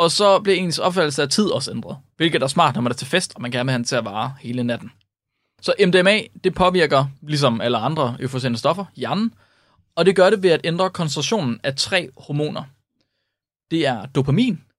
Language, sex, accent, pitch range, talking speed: Danish, male, native, 130-185 Hz, 205 wpm